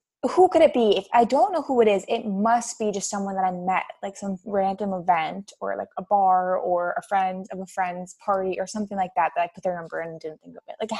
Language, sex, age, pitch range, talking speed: English, female, 20-39, 190-250 Hz, 280 wpm